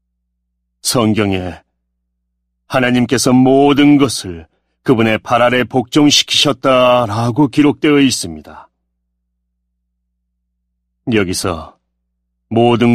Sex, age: male, 40-59